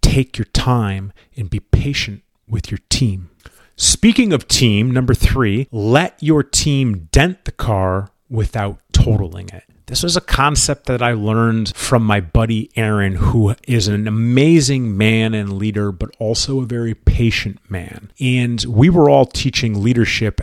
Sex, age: male, 30-49